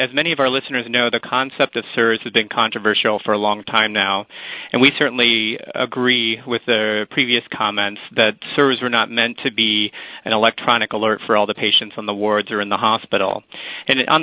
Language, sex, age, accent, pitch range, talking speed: English, male, 30-49, American, 110-130 Hz, 205 wpm